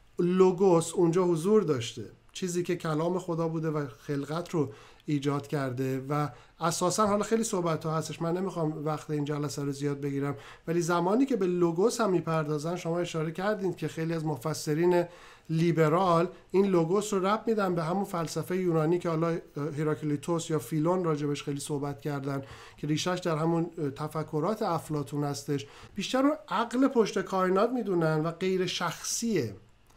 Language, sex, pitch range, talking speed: Persian, male, 155-185 Hz, 155 wpm